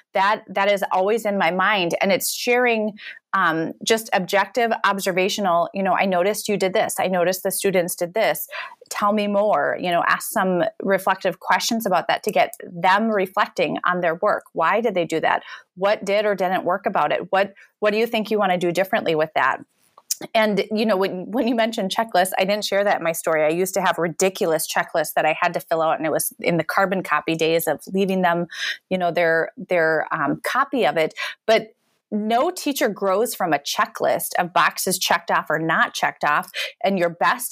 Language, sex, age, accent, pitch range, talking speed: English, female, 30-49, American, 175-210 Hz, 215 wpm